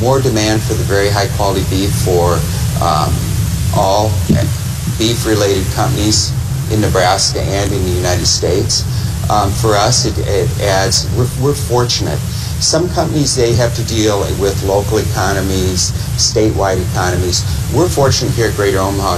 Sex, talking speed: male, 145 wpm